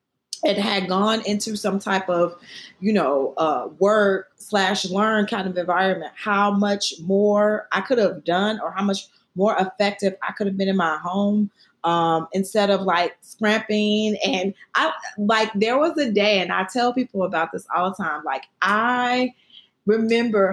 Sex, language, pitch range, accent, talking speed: female, English, 195-235 Hz, American, 170 wpm